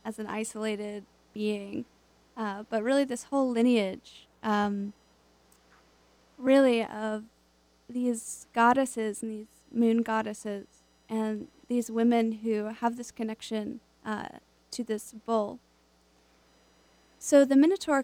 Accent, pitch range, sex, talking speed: American, 205-245 Hz, female, 110 wpm